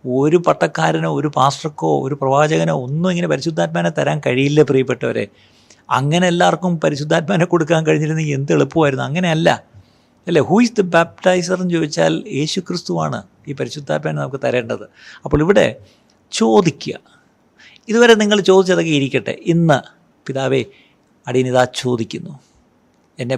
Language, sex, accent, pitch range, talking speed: Malayalam, male, native, 125-180 Hz, 110 wpm